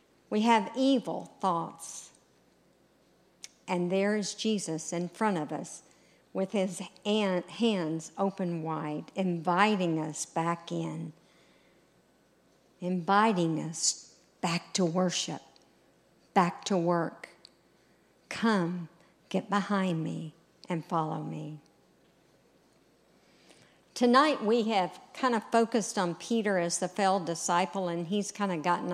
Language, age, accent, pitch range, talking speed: English, 50-69, American, 170-210 Hz, 110 wpm